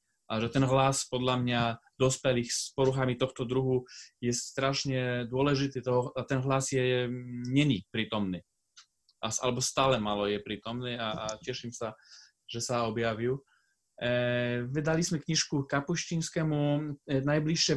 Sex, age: male, 20-39